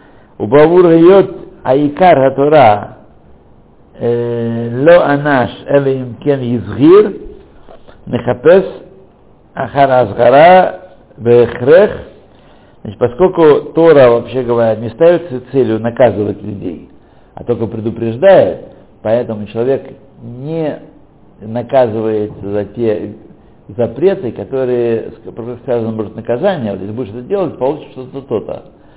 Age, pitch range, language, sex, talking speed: 60-79, 110-145 Hz, Russian, male, 85 wpm